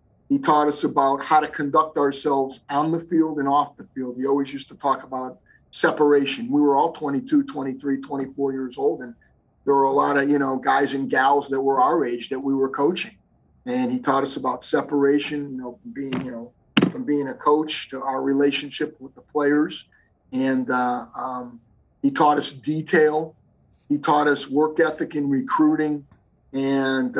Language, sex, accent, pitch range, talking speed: English, male, American, 135-150 Hz, 190 wpm